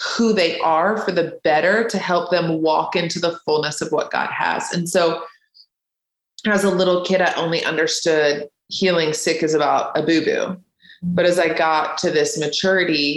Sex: female